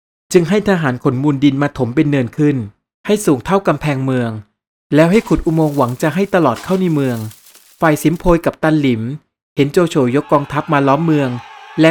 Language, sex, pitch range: Thai, male, 130-160 Hz